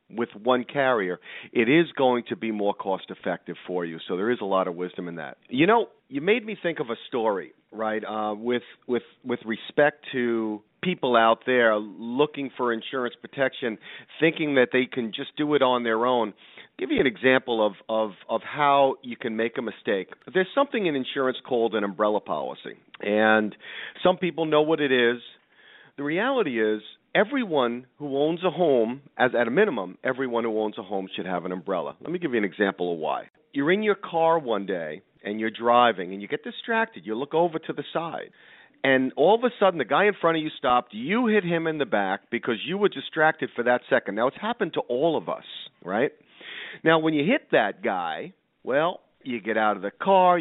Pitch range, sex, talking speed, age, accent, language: 110-160 Hz, male, 210 wpm, 40-59, American, English